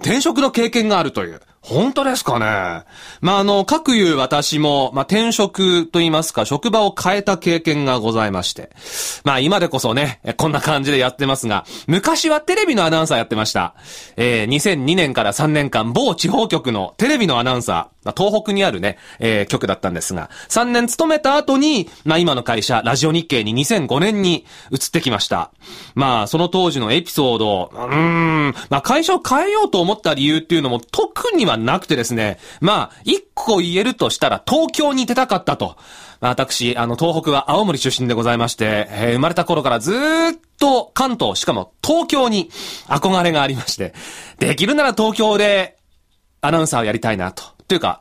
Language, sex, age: Japanese, male, 30-49